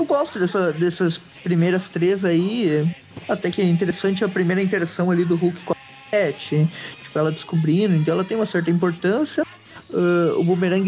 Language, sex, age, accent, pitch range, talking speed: Portuguese, male, 20-39, Brazilian, 155-200 Hz, 175 wpm